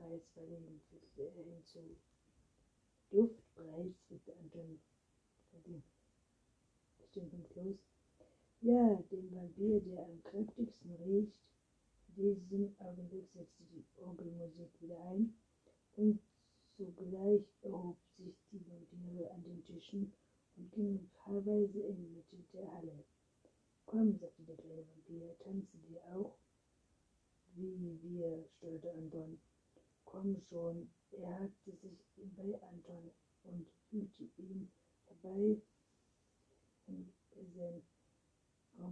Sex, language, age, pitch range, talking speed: female, German, 60-79, 170-195 Hz, 100 wpm